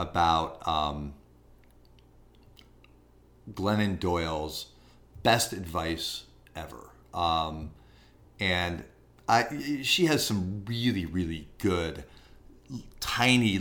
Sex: male